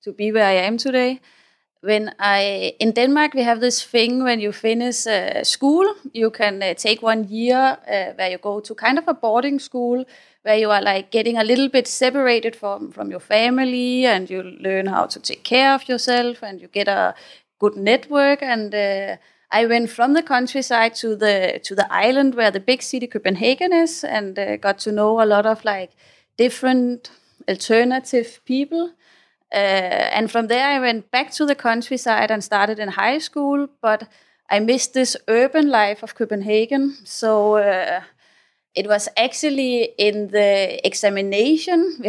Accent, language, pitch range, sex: Danish, English, 205-255 Hz, female